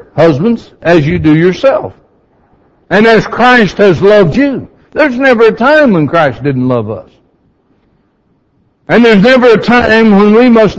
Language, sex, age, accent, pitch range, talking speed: English, male, 60-79, American, 155-230 Hz, 155 wpm